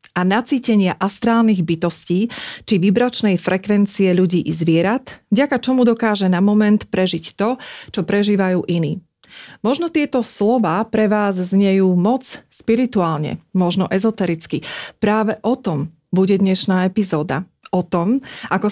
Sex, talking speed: female, 125 wpm